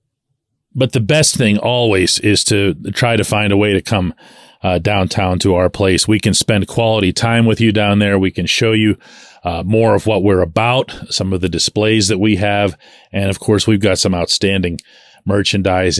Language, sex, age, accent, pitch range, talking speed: English, male, 40-59, American, 95-120 Hz, 200 wpm